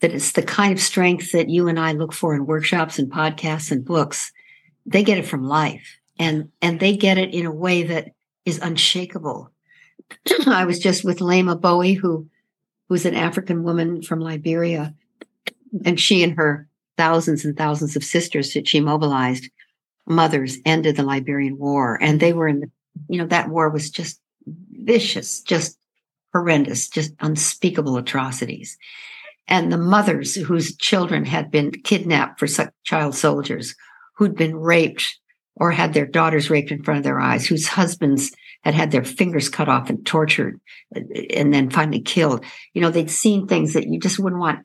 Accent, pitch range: American, 150-185 Hz